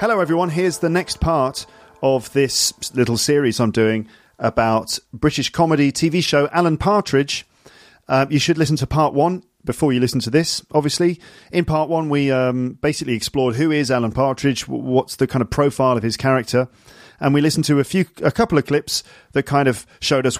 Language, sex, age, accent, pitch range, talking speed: English, male, 40-59, British, 120-155 Hz, 195 wpm